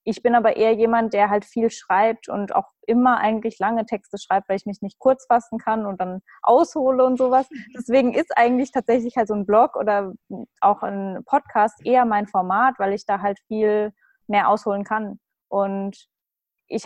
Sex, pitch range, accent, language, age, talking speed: female, 195-225 Hz, German, German, 20-39, 190 wpm